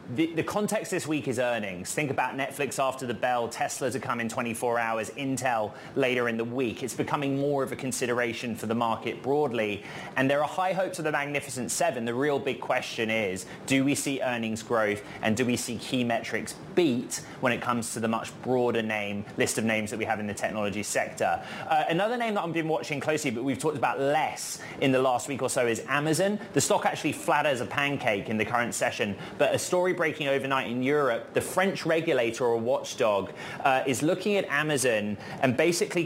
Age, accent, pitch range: 20-39, British, 115-145 Hz